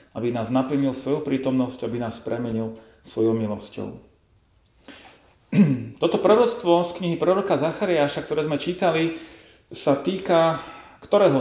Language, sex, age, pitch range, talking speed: Slovak, male, 40-59, 125-160 Hz, 115 wpm